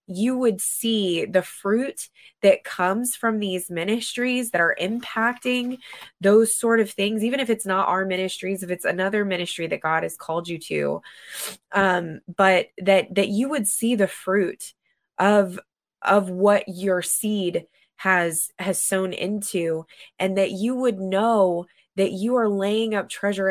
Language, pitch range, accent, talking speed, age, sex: English, 185-225 Hz, American, 160 wpm, 20-39, female